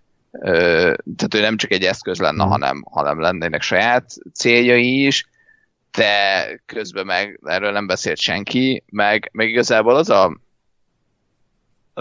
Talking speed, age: 130 wpm, 30-49